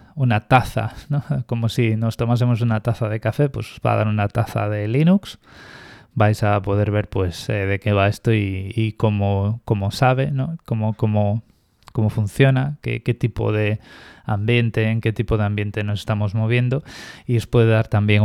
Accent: Spanish